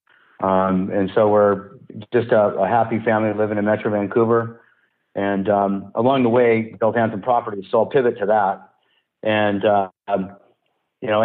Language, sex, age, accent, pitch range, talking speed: English, male, 50-69, American, 100-115 Hz, 160 wpm